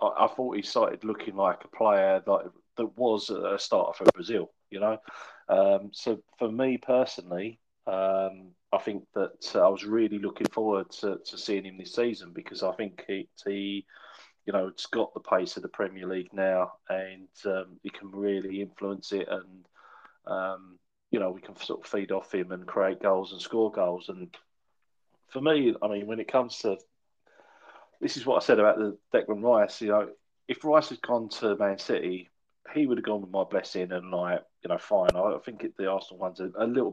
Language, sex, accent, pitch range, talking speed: English, male, British, 90-105 Hz, 200 wpm